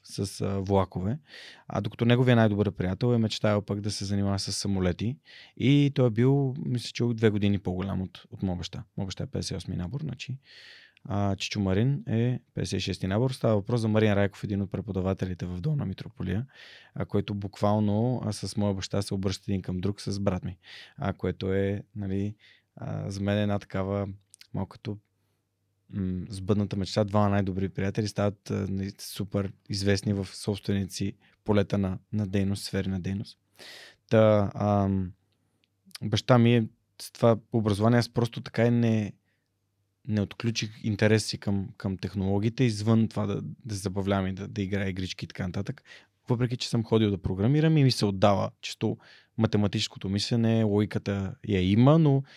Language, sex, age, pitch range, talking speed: Bulgarian, male, 20-39, 100-115 Hz, 165 wpm